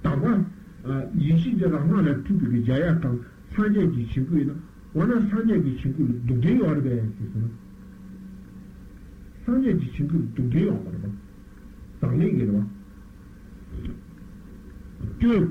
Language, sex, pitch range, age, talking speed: Italian, male, 125-200 Hz, 60-79, 85 wpm